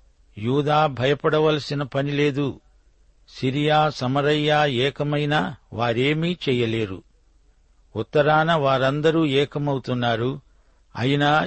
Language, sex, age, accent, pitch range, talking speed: Telugu, male, 60-79, native, 115-145 Hz, 65 wpm